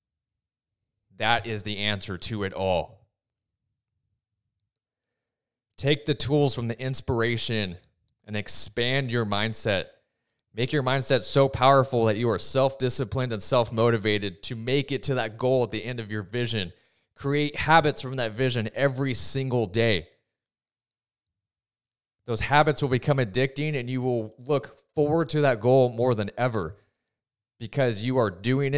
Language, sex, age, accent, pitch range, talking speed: English, male, 30-49, American, 105-130 Hz, 140 wpm